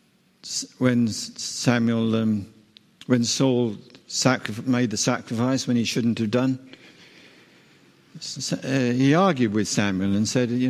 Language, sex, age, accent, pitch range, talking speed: English, male, 60-79, British, 110-130 Hz, 130 wpm